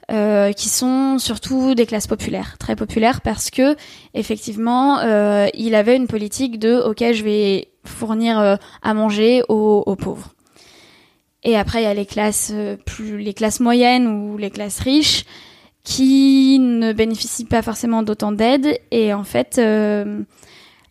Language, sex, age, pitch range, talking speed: French, female, 10-29, 215-250 Hz, 155 wpm